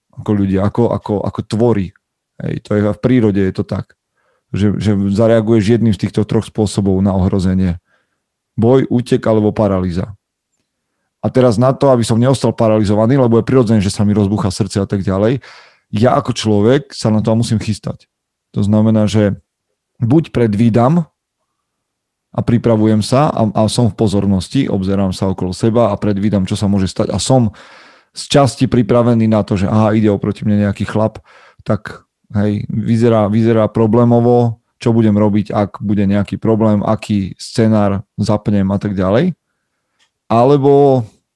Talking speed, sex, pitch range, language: 160 wpm, male, 100-120 Hz, Slovak